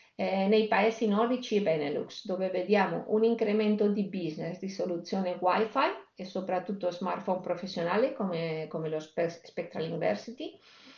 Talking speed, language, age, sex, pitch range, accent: 135 wpm, Italian, 50-69, female, 180-225 Hz, native